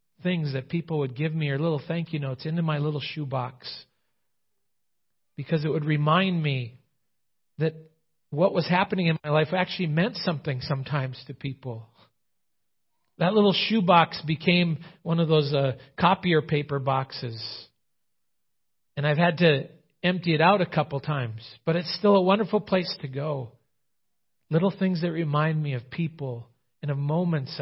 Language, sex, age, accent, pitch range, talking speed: English, male, 40-59, American, 135-165 Hz, 155 wpm